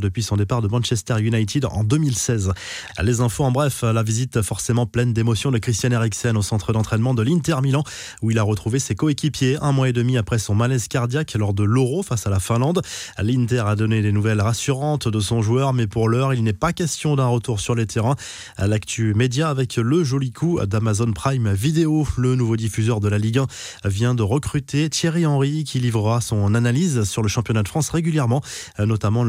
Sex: male